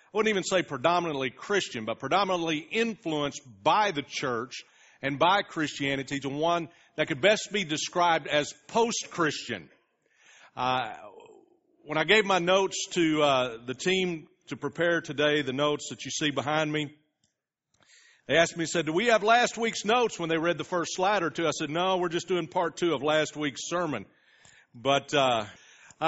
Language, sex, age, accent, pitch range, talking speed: English, male, 40-59, American, 135-190 Hz, 175 wpm